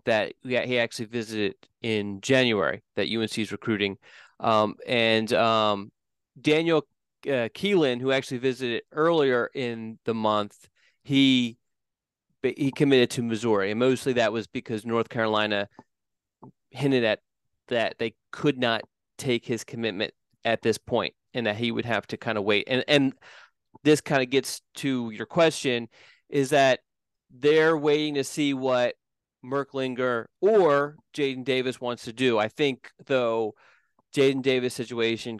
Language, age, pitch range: English, 30-49, 110-130 Hz